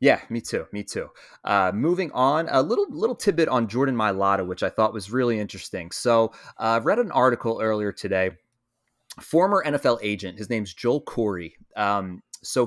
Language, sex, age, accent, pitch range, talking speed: English, male, 30-49, American, 100-120 Hz, 180 wpm